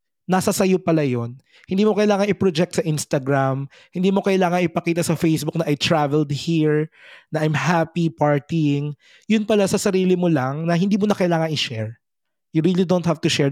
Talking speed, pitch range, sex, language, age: 185 wpm, 130-170 Hz, male, Filipino, 20-39